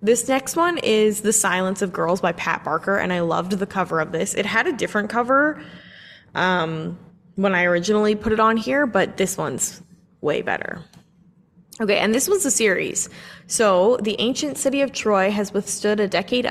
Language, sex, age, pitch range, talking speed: English, female, 20-39, 180-220 Hz, 190 wpm